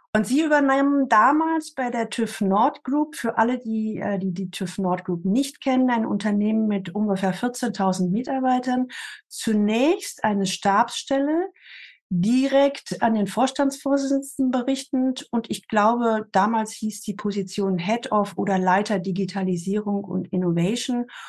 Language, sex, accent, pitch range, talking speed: German, female, German, 190-255 Hz, 135 wpm